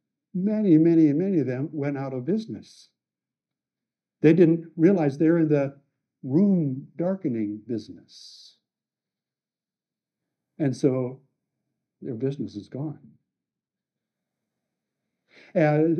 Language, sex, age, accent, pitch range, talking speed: English, male, 60-79, American, 135-165 Hz, 95 wpm